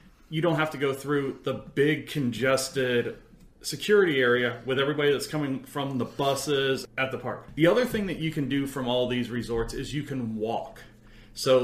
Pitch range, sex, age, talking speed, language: 120-145 Hz, male, 30-49, 190 wpm, English